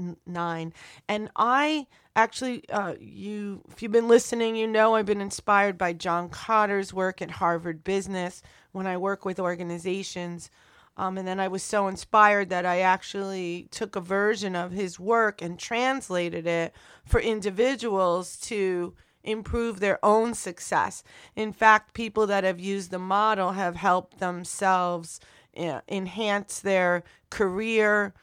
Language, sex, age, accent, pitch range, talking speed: English, female, 30-49, American, 180-210 Hz, 145 wpm